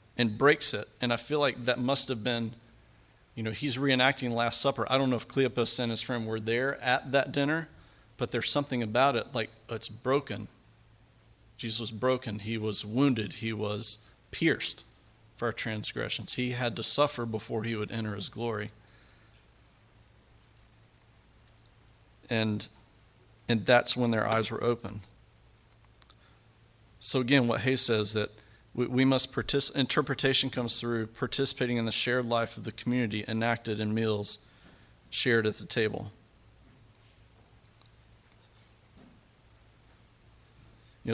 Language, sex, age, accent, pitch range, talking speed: English, male, 40-59, American, 110-125 Hz, 140 wpm